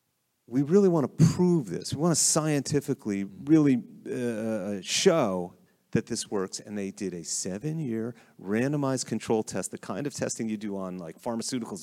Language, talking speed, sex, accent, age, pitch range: English, 165 wpm, male, American, 40-59, 105-150 Hz